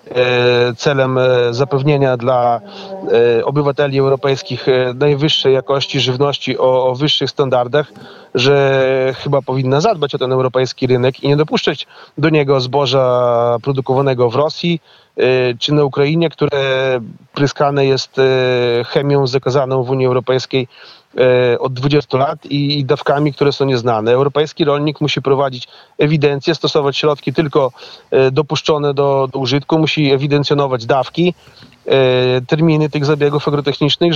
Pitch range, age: 130-150 Hz, 30-49